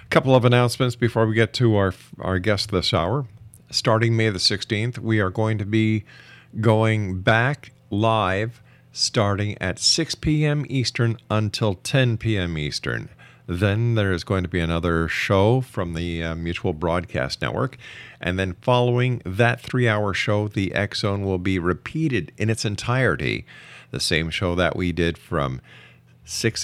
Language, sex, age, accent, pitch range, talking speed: English, male, 50-69, American, 90-120 Hz, 155 wpm